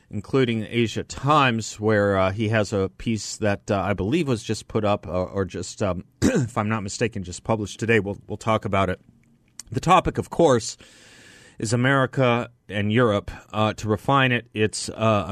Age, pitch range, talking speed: 30-49, 105-130 Hz, 185 wpm